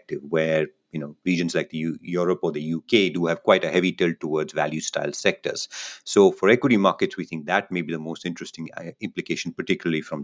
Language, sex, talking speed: English, male, 205 wpm